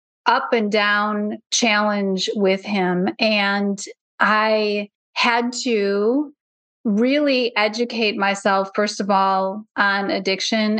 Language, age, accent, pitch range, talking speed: English, 30-49, American, 200-230 Hz, 100 wpm